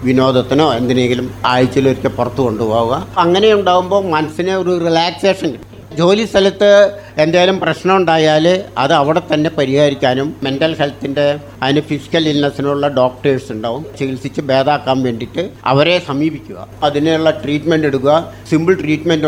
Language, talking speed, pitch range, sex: Malayalam, 110 wpm, 140-185 Hz, male